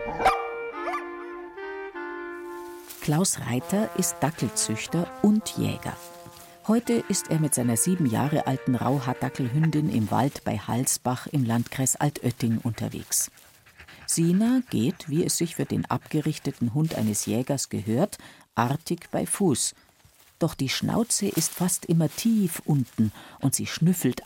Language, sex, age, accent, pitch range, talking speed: German, female, 50-69, German, 125-190 Hz, 120 wpm